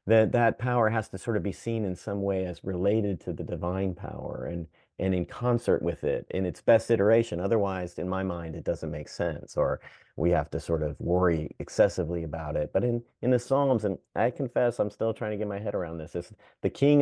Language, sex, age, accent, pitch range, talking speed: English, male, 40-59, American, 95-125 Hz, 230 wpm